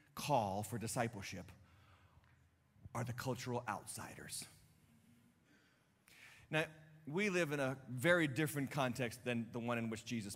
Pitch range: 125-180 Hz